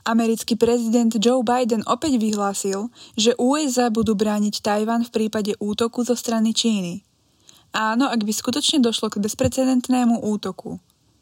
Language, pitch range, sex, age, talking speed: Slovak, 210-250 Hz, female, 20-39, 135 wpm